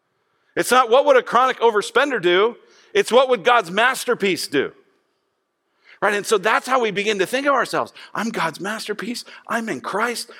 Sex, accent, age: male, American, 50-69